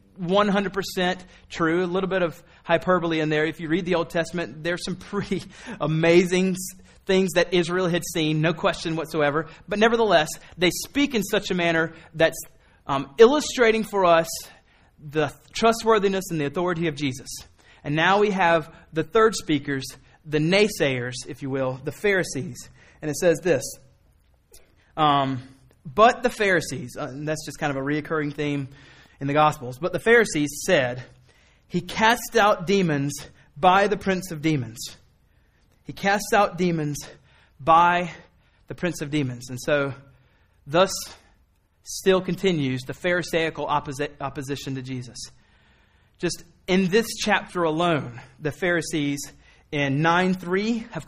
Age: 30-49